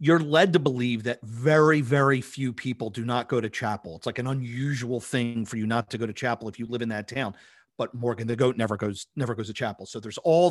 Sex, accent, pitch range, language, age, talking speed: male, American, 110-145 Hz, English, 40-59, 255 wpm